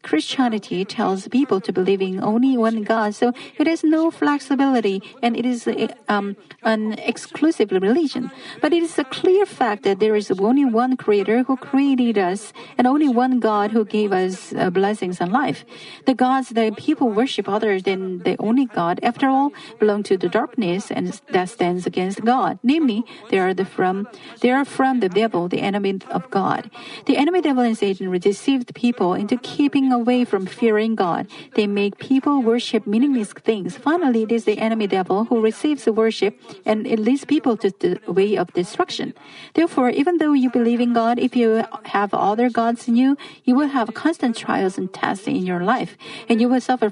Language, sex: Korean, female